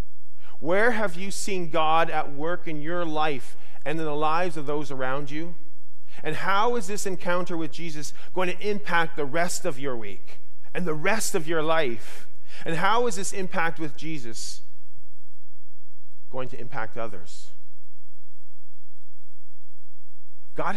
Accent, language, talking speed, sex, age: American, English, 145 wpm, male, 40-59